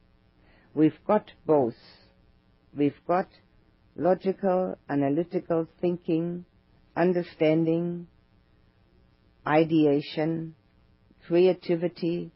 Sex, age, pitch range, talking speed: female, 50-69, 130-175 Hz, 55 wpm